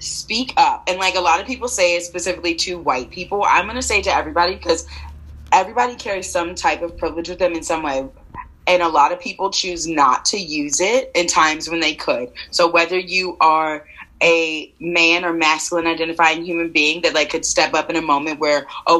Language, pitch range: English, 155-185 Hz